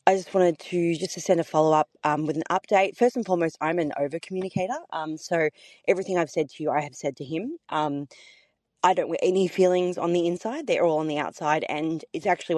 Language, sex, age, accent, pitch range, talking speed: English, female, 20-39, Australian, 150-185 Hz, 240 wpm